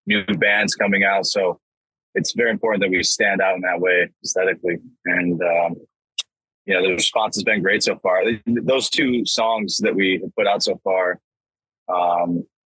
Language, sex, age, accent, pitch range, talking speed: English, male, 20-39, American, 95-115 Hz, 175 wpm